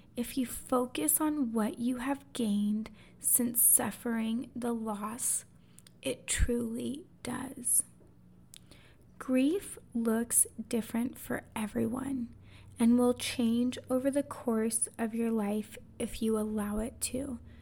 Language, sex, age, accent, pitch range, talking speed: English, female, 20-39, American, 220-250 Hz, 115 wpm